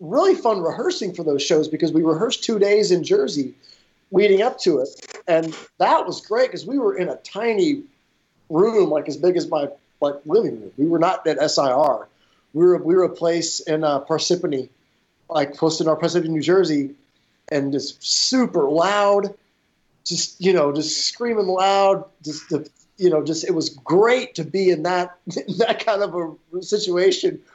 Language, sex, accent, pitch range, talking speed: English, male, American, 150-205 Hz, 185 wpm